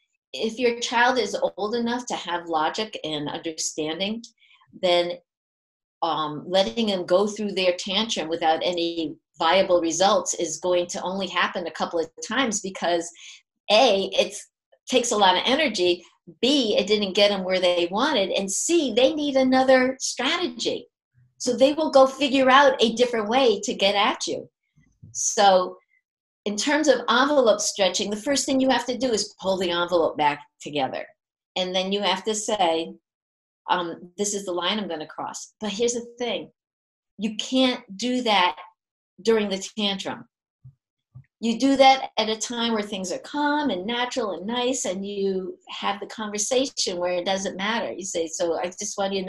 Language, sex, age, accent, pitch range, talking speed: English, female, 50-69, American, 180-245 Hz, 175 wpm